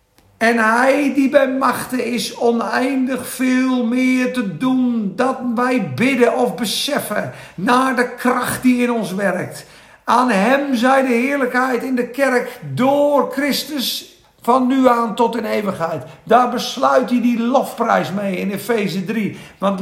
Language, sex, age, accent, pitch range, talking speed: Dutch, male, 50-69, Dutch, 220-250 Hz, 150 wpm